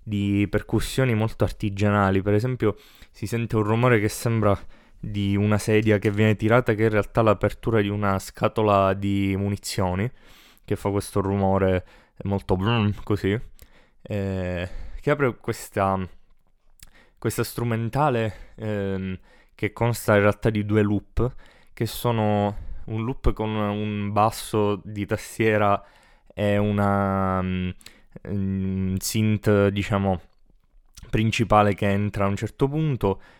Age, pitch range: 20-39, 100-110 Hz